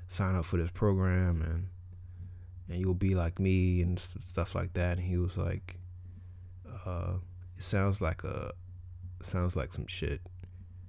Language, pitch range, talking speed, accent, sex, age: English, 90-95 Hz, 155 wpm, American, male, 20-39